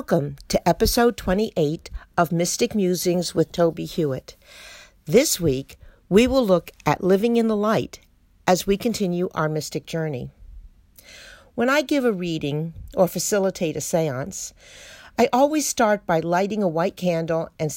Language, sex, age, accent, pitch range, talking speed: English, female, 50-69, American, 160-215 Hz, 150 wpm